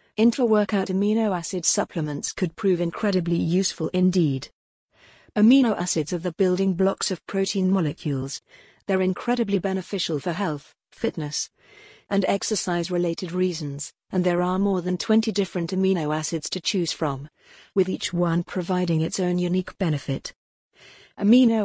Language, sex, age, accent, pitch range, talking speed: English, female, 40-59, British, 170-200 Hz, 135 wpm